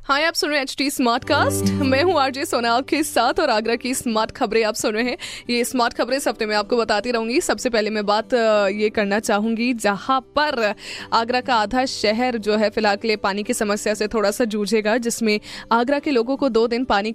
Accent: native